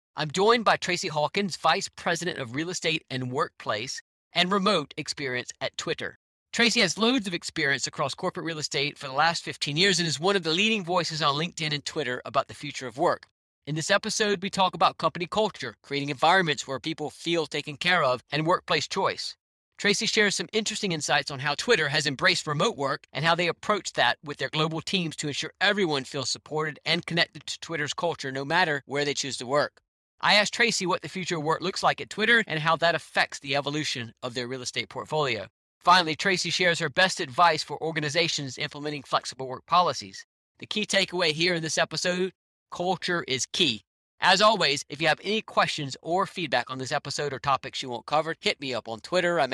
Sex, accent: male, American